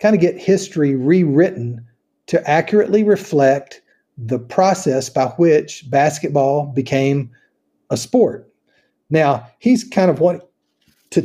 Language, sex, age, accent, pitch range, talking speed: English, male, 40-59, American, 125-155 Hz, 115 wpm